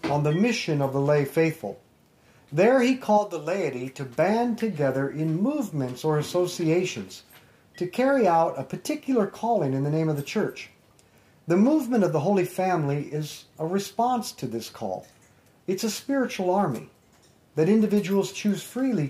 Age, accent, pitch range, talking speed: 50-69, American, 150-220 Hz, 160 wpm